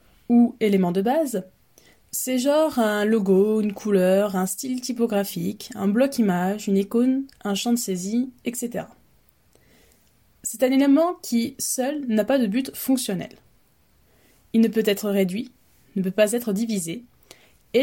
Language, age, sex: French, 20-39, female